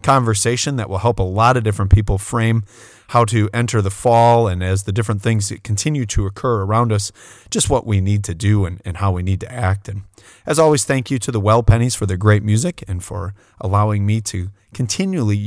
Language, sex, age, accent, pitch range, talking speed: English, male, 30-49, American, 100-120 Hz, 225 wpm